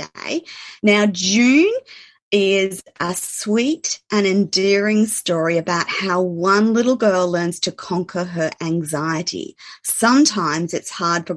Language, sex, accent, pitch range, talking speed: English, female, Australian, 165-215 Hz, 115 wpm